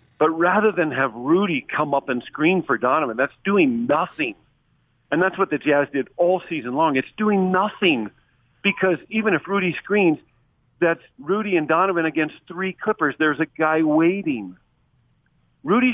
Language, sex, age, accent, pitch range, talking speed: English, male, 50-69, American, 130-175 Hz, 160 wpm